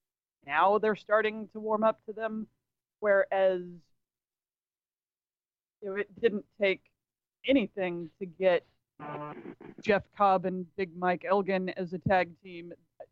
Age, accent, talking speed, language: 30-49, American, 115 wpm, English